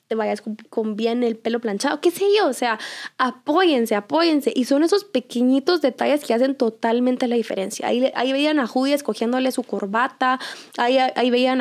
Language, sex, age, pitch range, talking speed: Spanish, female, 10-29, 230-280 Hz, 180 wpm